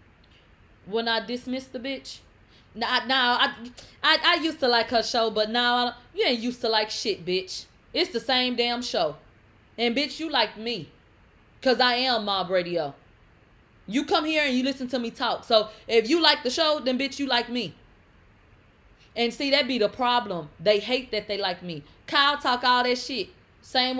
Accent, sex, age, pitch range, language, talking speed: American, female, 20-39, 150-245 Hz, English, 195 wpm